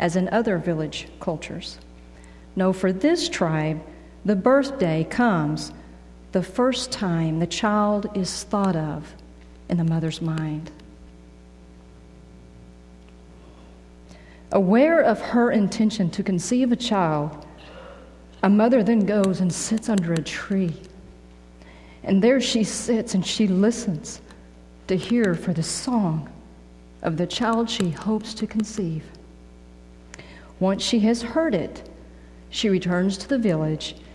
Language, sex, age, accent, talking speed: English, female, 50-69, American, 125 wpm